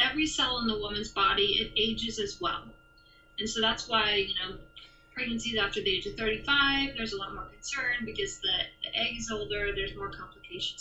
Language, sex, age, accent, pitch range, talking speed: English, female, 20-39, American, 200-265 Hz, 200 wpm